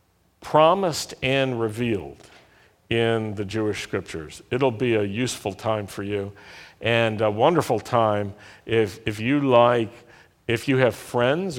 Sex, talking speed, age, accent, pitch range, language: male, 135 wpm, 50-69, American, 110-140 Hz, English